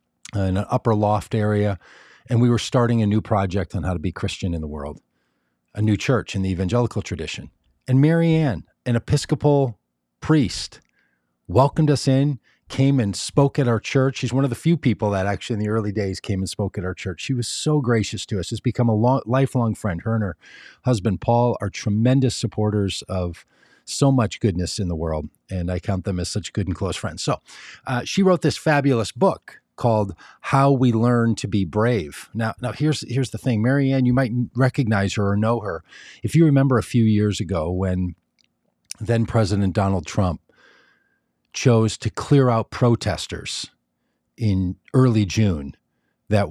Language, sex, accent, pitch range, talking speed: English, male, American, 95-125 Hz, 185 wpm